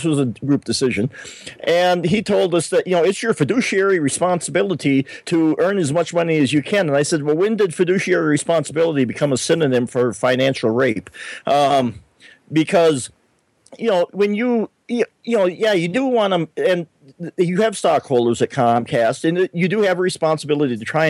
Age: 40-59